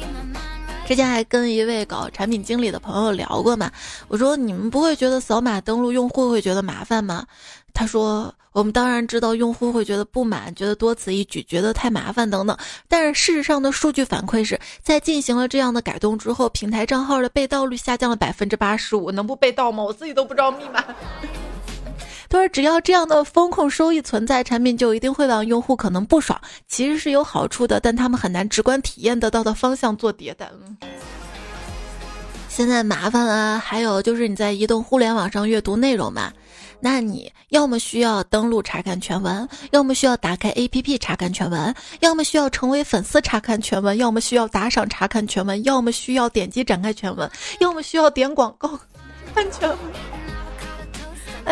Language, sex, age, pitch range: Chinese, female, 20-39, 215-270 Hz